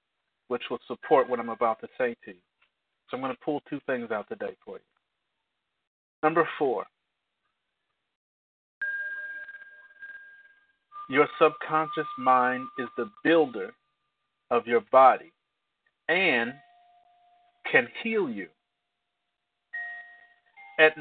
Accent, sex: American, male